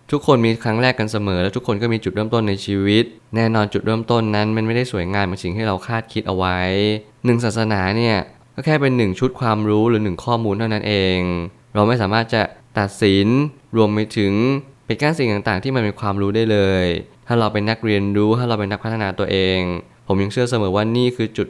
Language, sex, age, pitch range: Thai, male, 20-39, 100-120 Hz